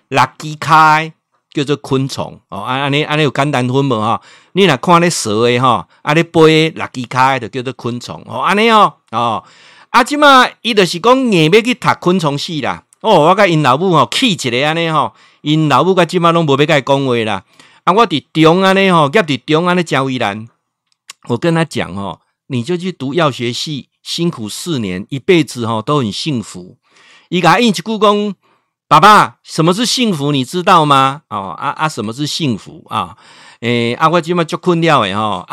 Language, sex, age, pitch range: Chinese, male, 50-69, 125-170 Hz